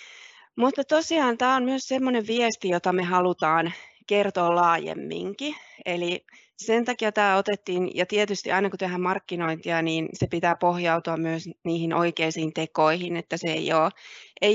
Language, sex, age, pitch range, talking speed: Finnish, female, 30-49, 170-215 Hz, 145 wpm